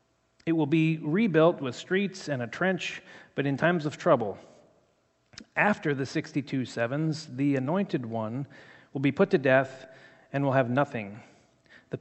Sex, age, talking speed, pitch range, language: male, 40-59, 155 wpm, 125-165 Hz, English